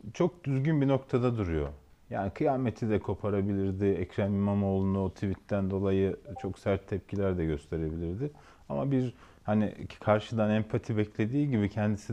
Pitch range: 90-110 Hz